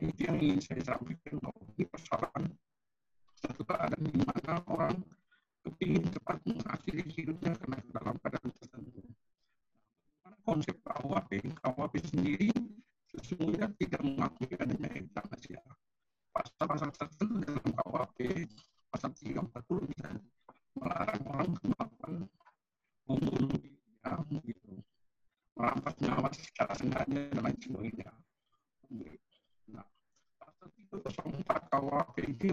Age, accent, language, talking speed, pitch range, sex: 50-69, American, Indonesian, 95 wpm, 145-195 Hz, male